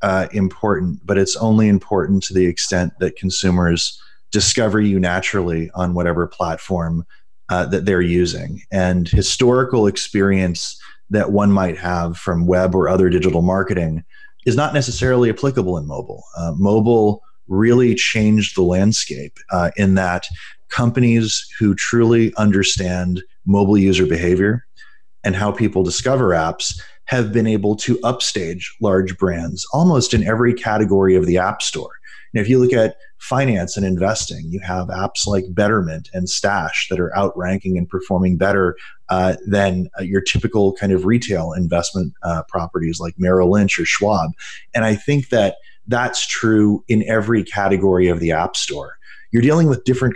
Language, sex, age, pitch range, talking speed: English, male, 30-49, 90-110 Hz, 155 wpm